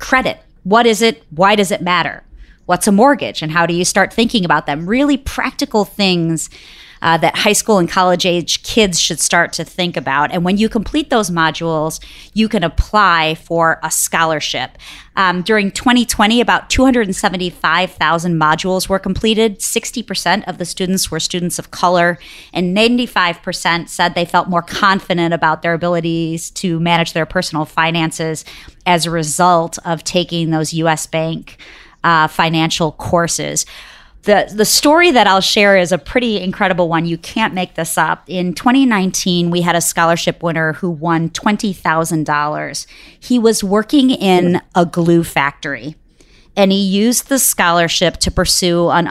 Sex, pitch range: female, 165-200 Hz